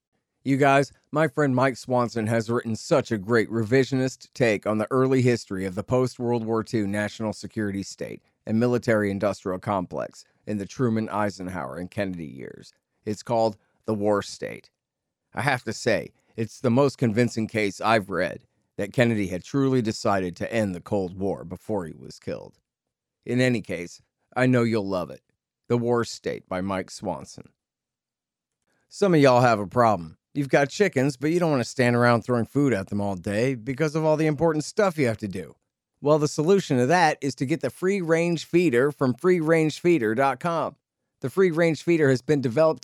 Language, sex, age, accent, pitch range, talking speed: English, male, 40-59, American, 110-150 Hz, 185 wpm